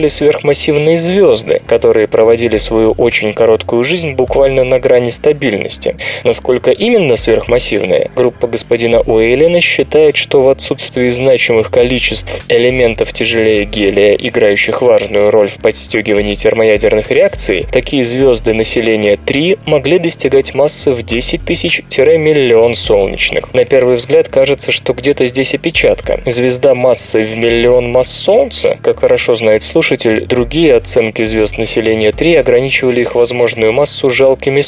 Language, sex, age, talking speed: Russian, male, 20-39, 130 wpm